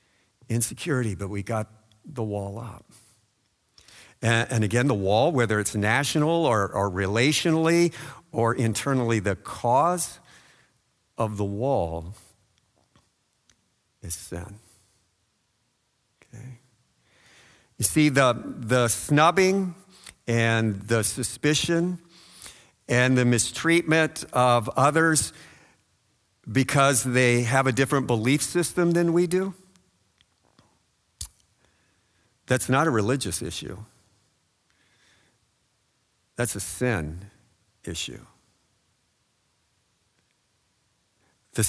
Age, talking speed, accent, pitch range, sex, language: 50-69, 90 wpm, American, 105-150 Hz, male, English